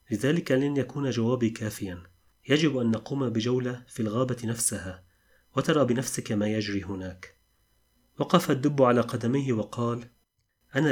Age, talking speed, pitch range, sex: 30-49, 125 wpm, 105-130 Hz, male